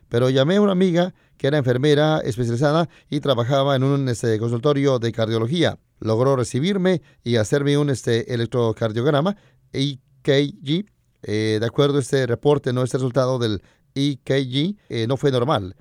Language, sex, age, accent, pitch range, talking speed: Spanish, male, 30-49, Mexican, 120-150 Hz, 150 wpm